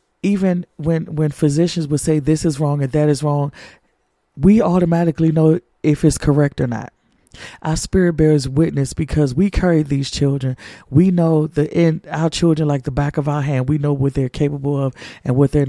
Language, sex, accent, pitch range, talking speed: English, male, American, 140-160 Hz, 195 wpm